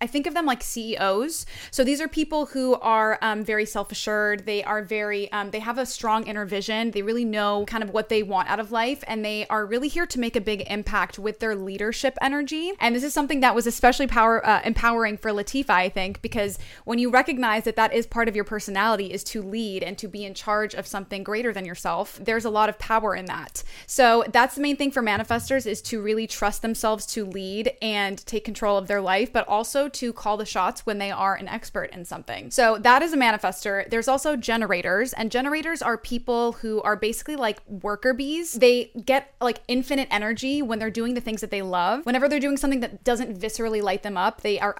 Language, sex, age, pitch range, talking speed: English, female, 20-39, 205-245 Hz, 230 wpm